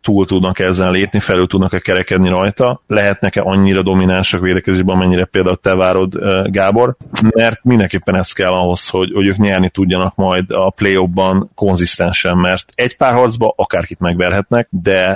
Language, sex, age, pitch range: Hungarian, male, 30-49, 95-100 Hz